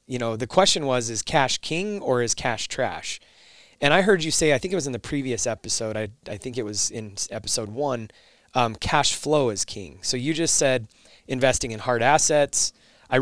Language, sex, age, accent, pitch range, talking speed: English, male, 20-39, American, 115-140 Hz, 215 wpm